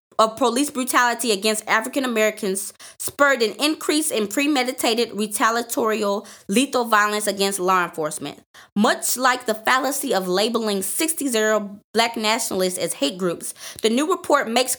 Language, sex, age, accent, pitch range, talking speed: English, female, 20-39, American, 195-250 Hz, 130 wpm